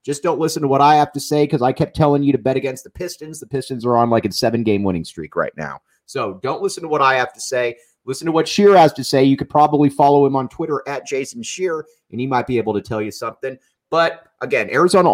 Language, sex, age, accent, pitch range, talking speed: English, male, 30-49, American, 120-155 Hz, 270 wpm